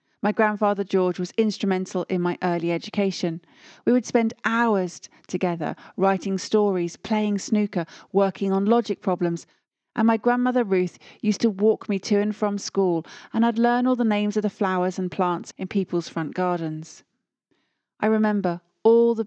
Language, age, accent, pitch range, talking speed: English, 40-59, British, 175-215 Hz, 165 wpm